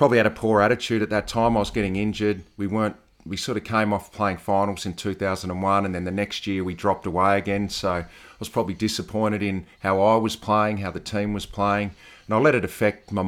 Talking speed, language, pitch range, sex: 255 wpm, English, 95-110 Hz, male